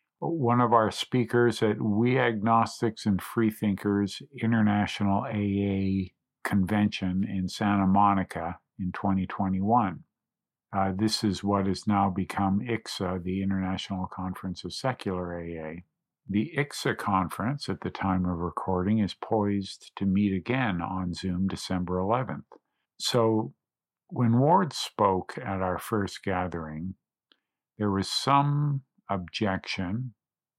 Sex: male